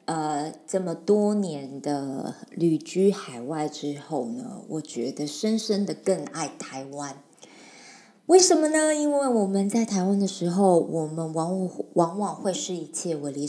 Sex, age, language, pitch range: female, 20-39, Chinese, 150-200 Hz